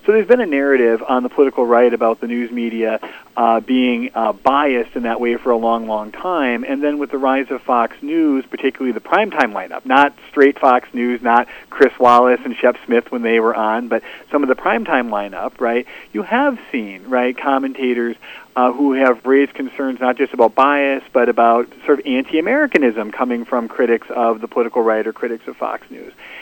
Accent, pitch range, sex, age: American, 120-145 Hz, male, 40-59